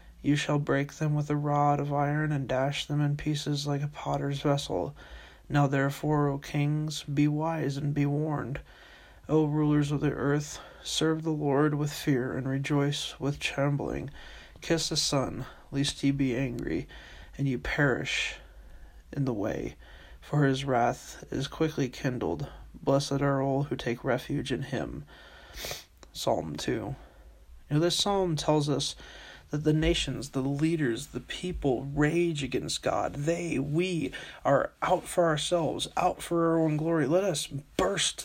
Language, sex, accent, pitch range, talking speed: English, male, American, 140-160 Hz, 155 wpm